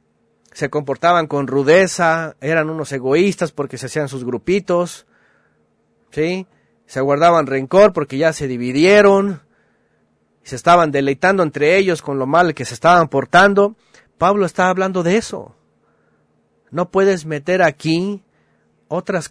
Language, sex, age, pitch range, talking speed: Spanish, male, 40-59, 120-170 Hz, 135 wpm